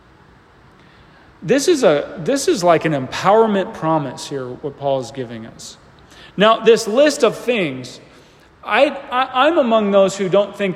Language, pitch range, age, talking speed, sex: English, 165-240 Hz, 40-59, 155 wpm, male